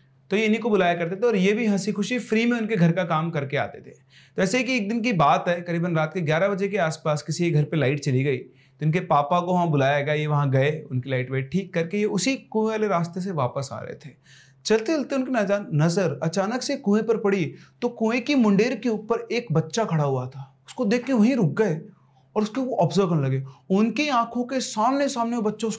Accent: native